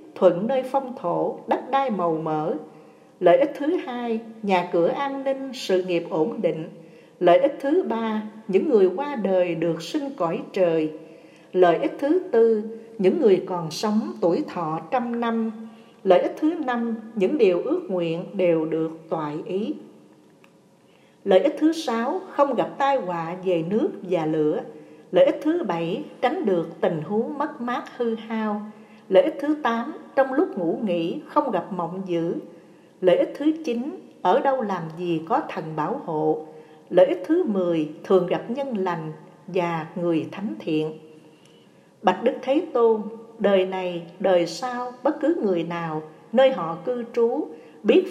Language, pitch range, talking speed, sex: Vietnamese, 170-250 Hz, 165 wpm, female